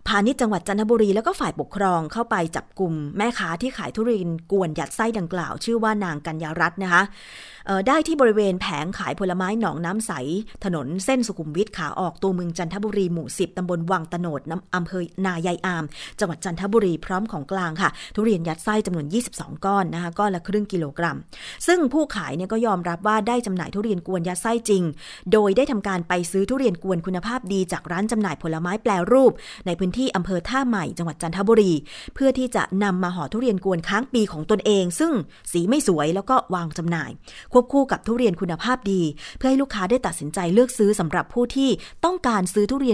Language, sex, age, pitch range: Thai, female, 20-39, 175-230 Hz